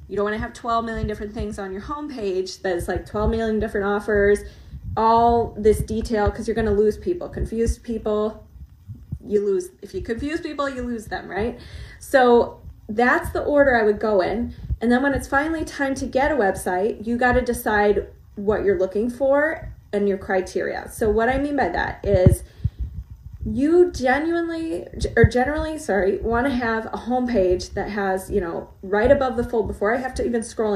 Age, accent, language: 20-39, American, English